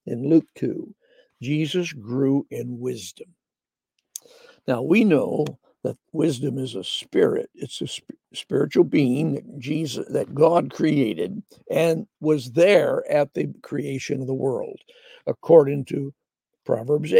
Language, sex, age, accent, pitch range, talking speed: English, male, 60-79, American, 140-225 Hz, 130 wpm